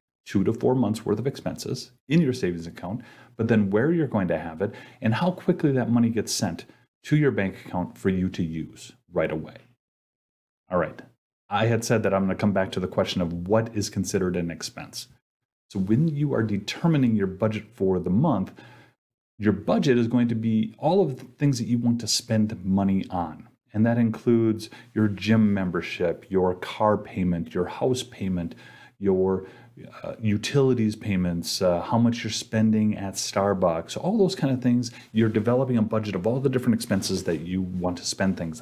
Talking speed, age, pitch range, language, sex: 195 wpm, 30-49, 95-125 Hz, English, male